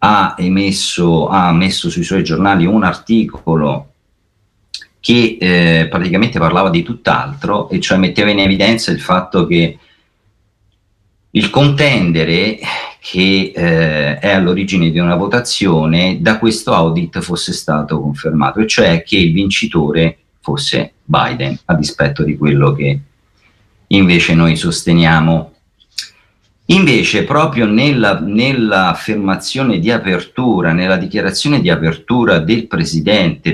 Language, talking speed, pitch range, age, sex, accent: Italian, 115 wpm, 80-110 Hz, 40-59, male, native